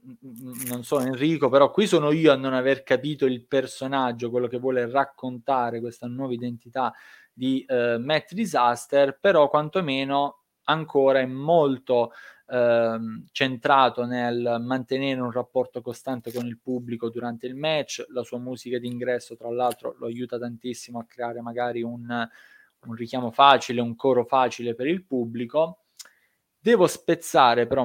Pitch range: 120-135 Hz